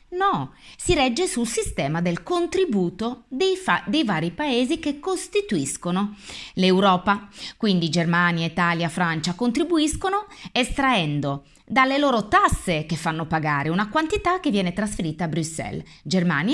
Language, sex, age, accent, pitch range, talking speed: Italian, female, 30-49, native, 160-220 Hz, 125 wpm